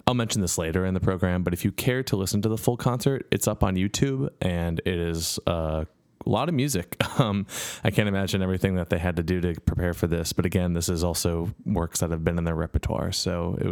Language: English